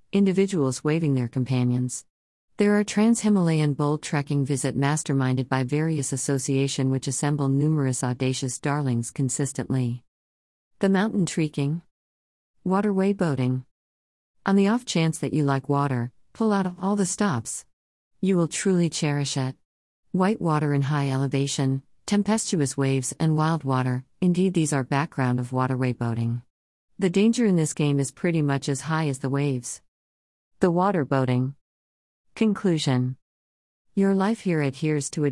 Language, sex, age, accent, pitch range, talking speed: Tamil, female, 50-69, American, 130-160 Hz, 140 wpm